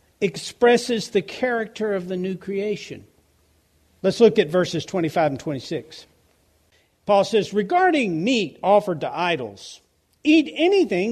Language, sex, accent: English, male, American